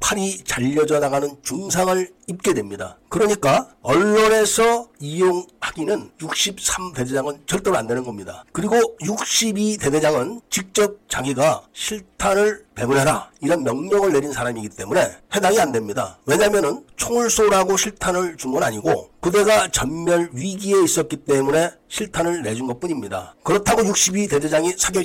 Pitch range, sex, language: 145-205 Hz, male, Korean